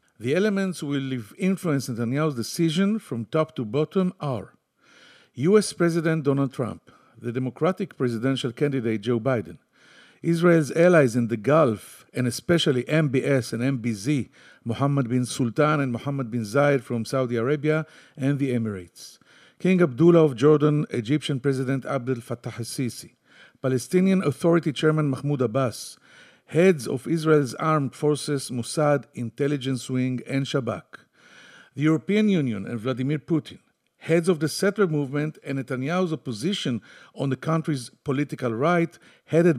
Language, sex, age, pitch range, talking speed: English, male, 50-69, 125-160 Hz, 135 wpm